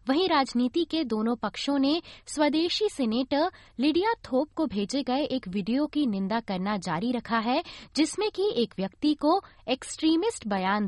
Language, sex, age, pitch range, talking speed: Hindi, female, 20-39, 215-310 Hz, 155 wpm